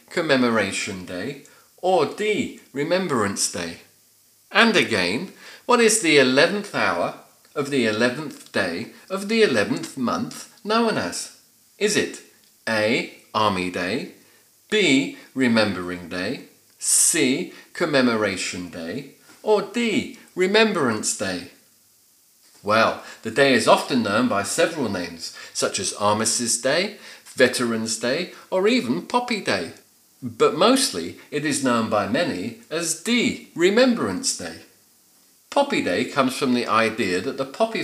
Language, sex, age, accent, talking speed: English, male, 40-59, British, 120 wpm